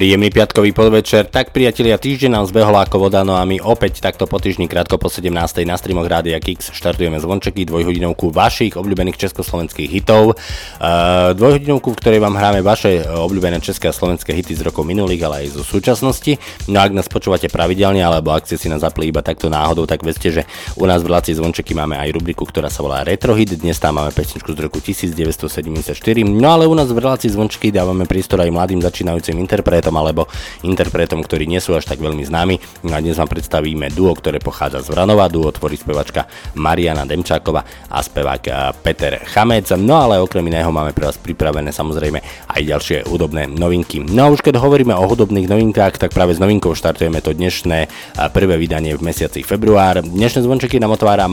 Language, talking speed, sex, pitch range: Slovak, 190 wpm, male, 80-100 Hz